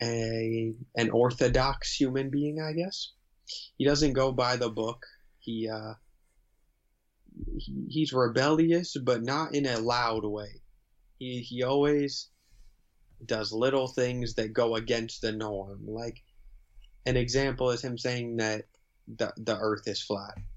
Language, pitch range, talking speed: English, 110-140 Hz, 135 wpm